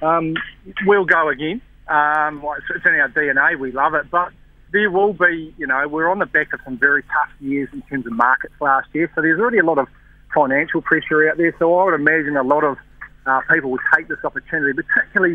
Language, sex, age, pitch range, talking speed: English, male, 40-59, 145-180 Hz, 225 wpm